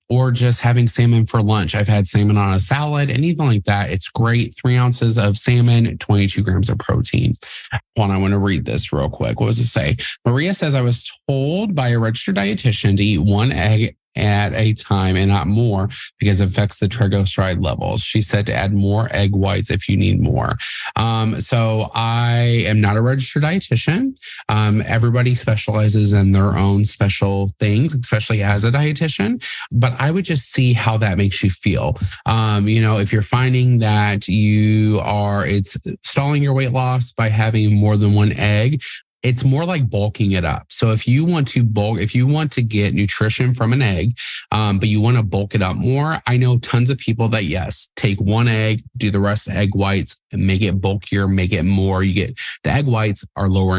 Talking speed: 205 wpm